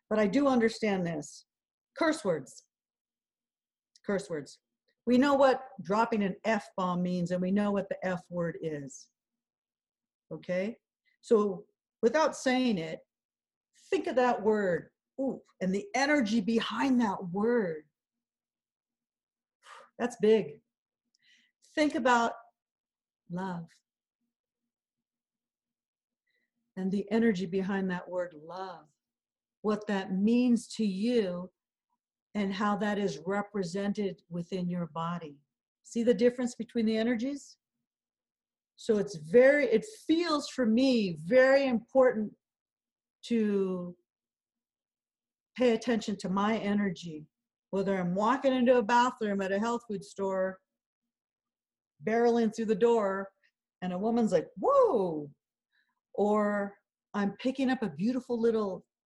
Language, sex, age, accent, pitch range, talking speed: English, female, 50-69, American, 190-245 Hz, 115 wpm